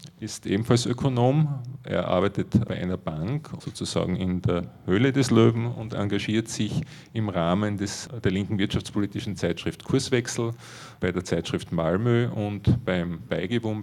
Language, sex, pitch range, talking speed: German, male, 95-115 Hz, 140 wpm